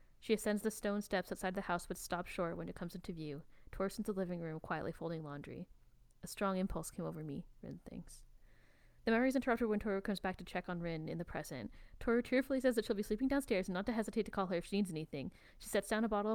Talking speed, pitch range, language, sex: 260 wpm, 180-250 Hz, English, female